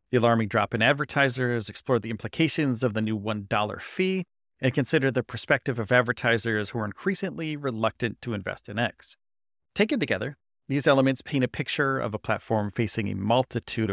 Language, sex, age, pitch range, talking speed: English, male, 40-59, 105-130 Hz, 170 wpm